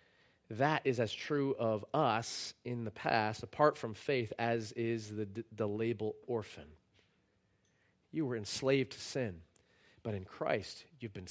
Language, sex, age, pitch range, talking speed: English, male, 40-59, 95-125 Hz, 150 wpm